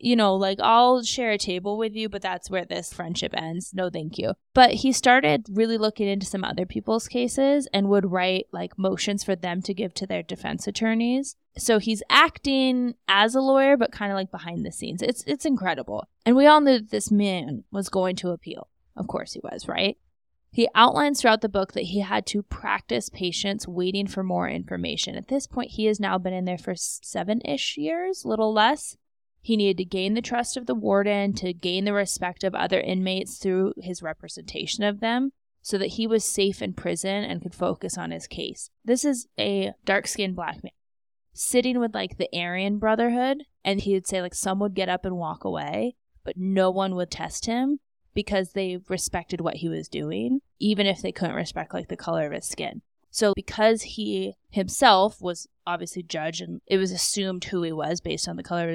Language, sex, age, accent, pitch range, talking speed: English, female, 20-39, American, 180-225 Hz, 205 wpm